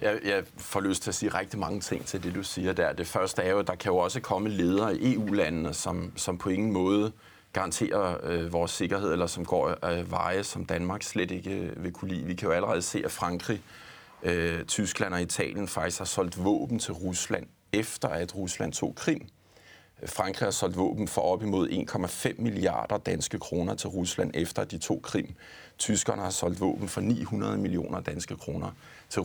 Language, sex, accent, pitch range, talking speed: Danish, male, native, 90-110 Hz, 200 wpm